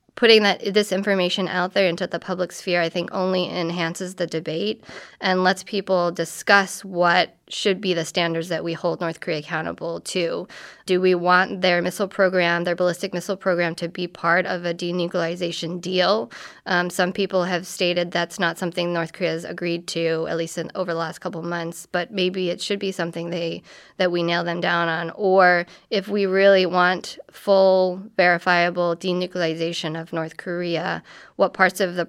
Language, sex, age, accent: English, female, 20-39, American